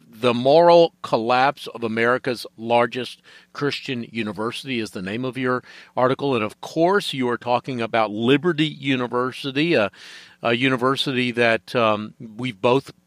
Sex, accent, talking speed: male, American, 140 wpm